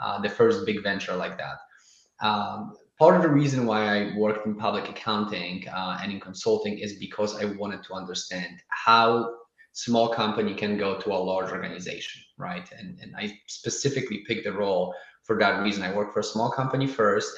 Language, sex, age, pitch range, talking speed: English, male, 20-39, 100-120 Hz, 190 wpm